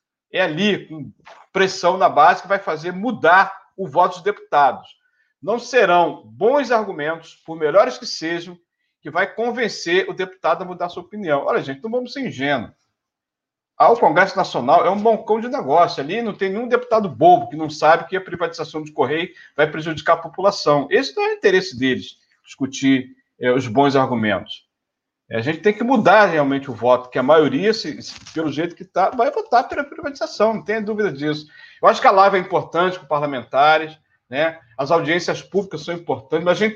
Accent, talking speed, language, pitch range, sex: Brazilian, 190 wpm, Portuguese, 155-220 Hz, male